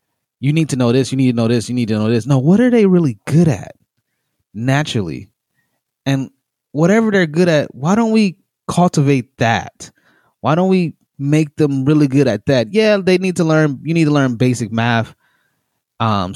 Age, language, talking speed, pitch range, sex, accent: 20-39, English, 200 wpm, 115-150 Hz, male, American